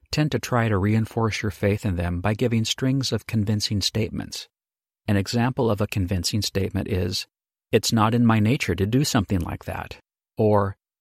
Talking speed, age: 180 wpm, 50-69